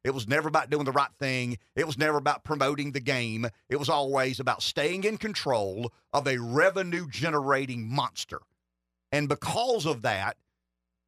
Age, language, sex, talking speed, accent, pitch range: 40-59, English, male, 160 wpm, American, 115-155 Hz